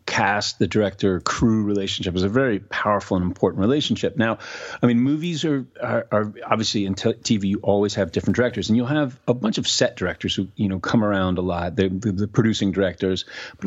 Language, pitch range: English, 100-125 Hz